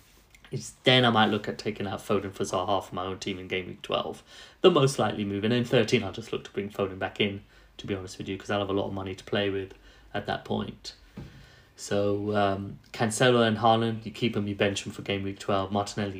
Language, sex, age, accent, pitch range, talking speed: English, male, 30-49, British, 100-115 Hz, 250 wpm